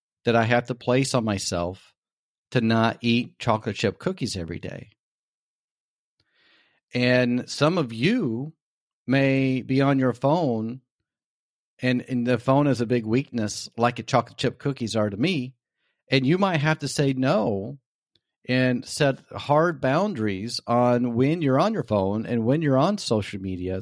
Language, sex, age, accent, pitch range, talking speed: English, male, 40-59, American, 110-135 Hz, 160 wpm